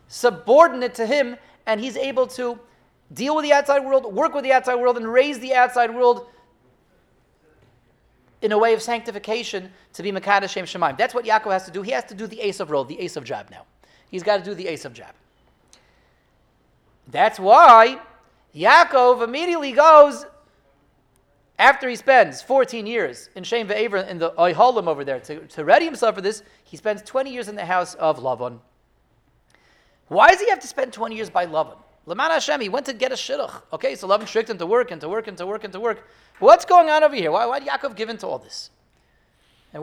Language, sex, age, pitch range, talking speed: English, male, 30-49, 200-270 Hz, 210 wpm